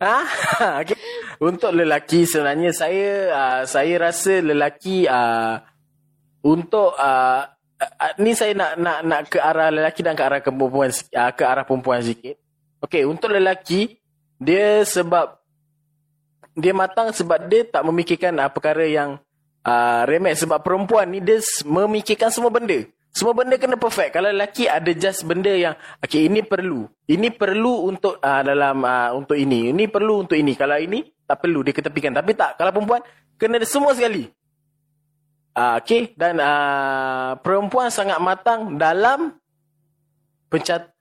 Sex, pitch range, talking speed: male, 150-205 Hz, 150 wpm